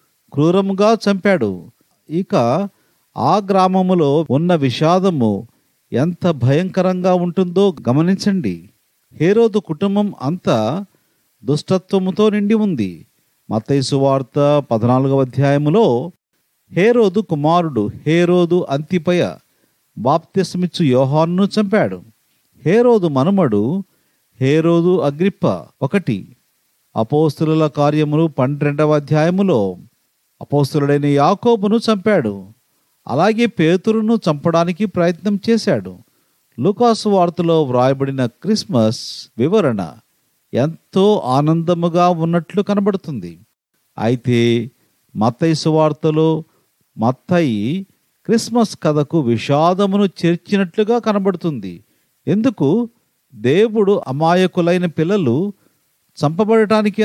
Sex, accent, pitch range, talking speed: male, native, 145-200 Hz, 75 wpm